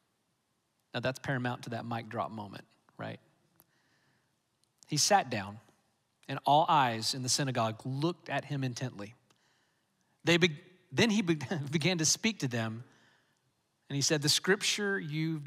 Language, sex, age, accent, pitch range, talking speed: English, male, 40-59, American, 135-185 Hz, 145 wpm